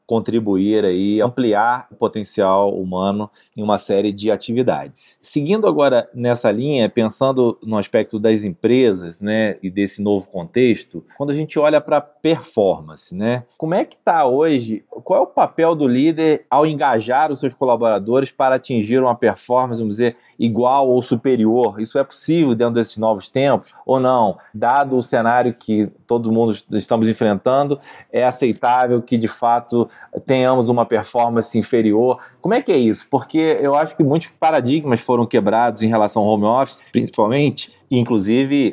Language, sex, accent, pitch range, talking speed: Portuguese, male, Brazilian, 110-140 Hz, 160 wpm